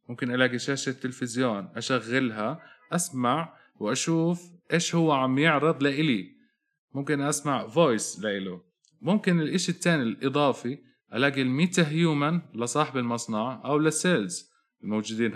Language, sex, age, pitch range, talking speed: English, male, 20-39, 110-160 Hz, 105 wpm